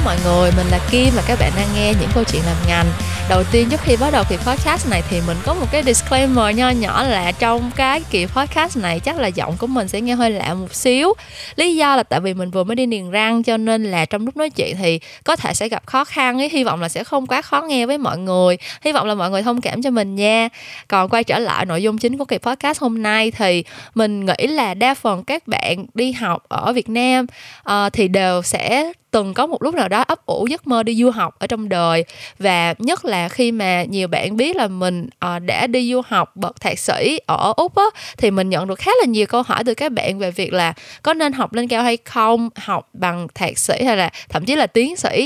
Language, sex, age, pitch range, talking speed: Vietnamese, female, 20-39, 185-255 Hz, 255 wpm